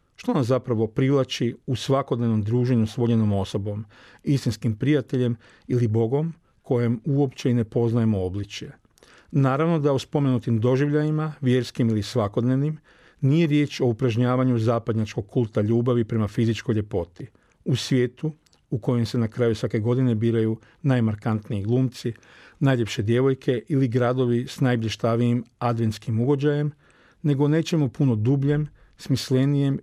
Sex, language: male, Croatian